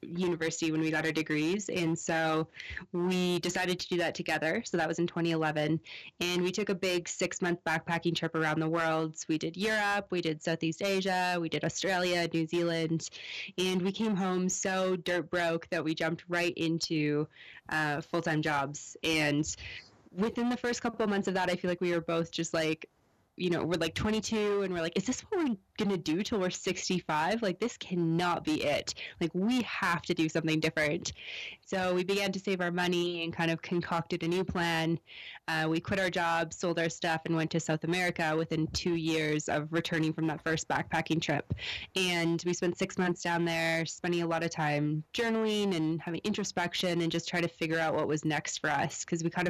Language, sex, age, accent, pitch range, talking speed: English, female, 20-39, American, 160-185 Hz, 205 wpm